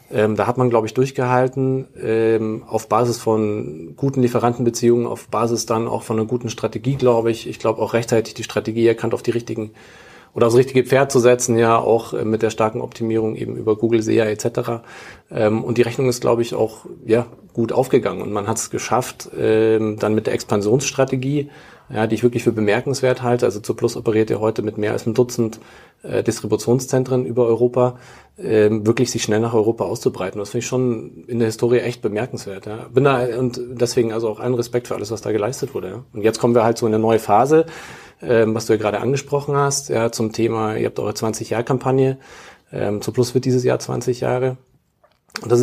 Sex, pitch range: male, 110-125 Hz